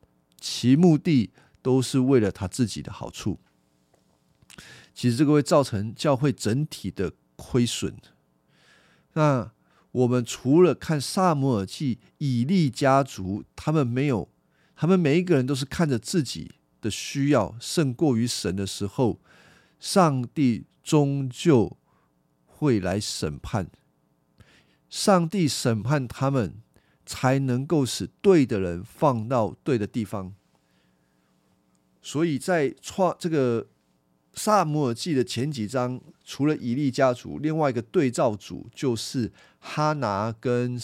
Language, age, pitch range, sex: Chinese, 50-69, 95-150 Hz, male